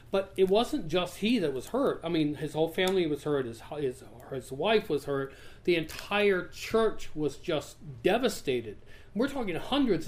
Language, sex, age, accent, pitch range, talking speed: English, male, 40-59, American, 145-190 Hz, 180 wpm